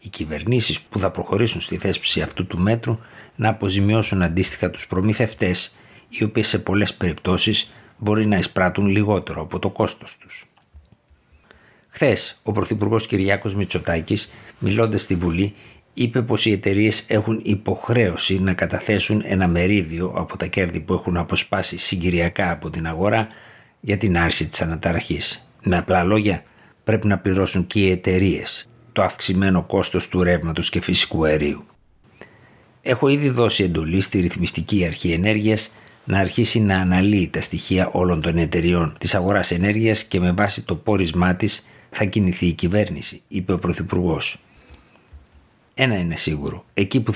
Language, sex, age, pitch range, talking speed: Greek, male, 60-79, 90-110 Hz, 145 wpm